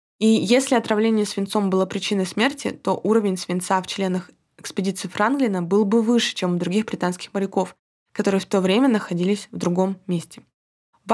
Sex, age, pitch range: female, 20-39, 190-225 Hz